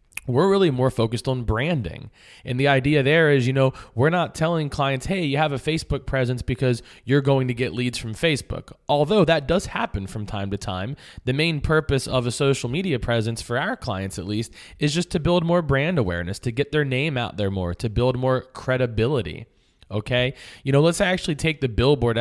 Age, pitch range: 20-39, 120-150 Hz